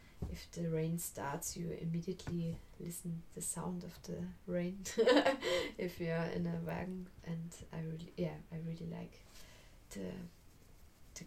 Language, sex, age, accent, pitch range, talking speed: English, female, 20-39, German, 165-185 Hz, 145 wpm